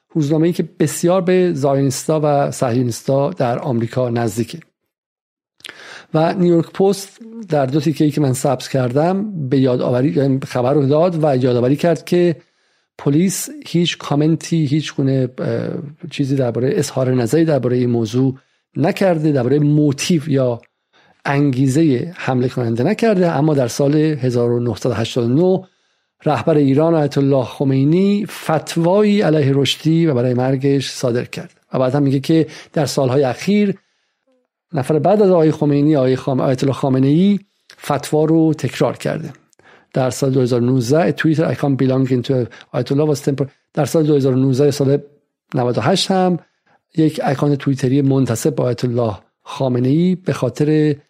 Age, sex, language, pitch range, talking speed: 50-69, male, Persian, 130-160 Hz, 135 wpm